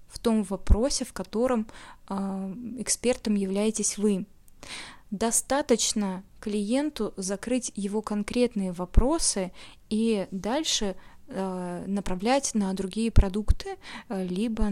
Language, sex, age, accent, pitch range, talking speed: Russian, female, 20-39, native, 195-235 Hz, 95 wpm